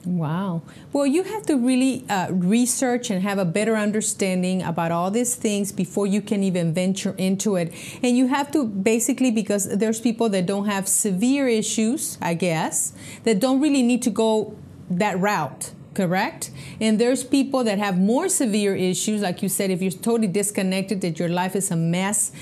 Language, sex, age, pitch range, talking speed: English, female, 30-49, 180-230 Hz, 185 wpm